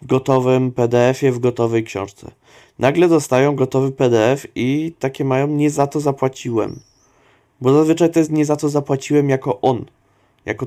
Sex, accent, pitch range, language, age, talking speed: male, native, 115-140 Hz, Polish, 20-39, 150 wpm